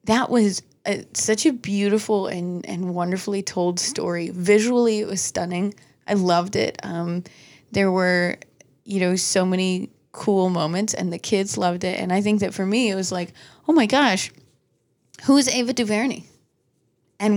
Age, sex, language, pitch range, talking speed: 20-39, female, English, 170-195 Hz, 170 wpm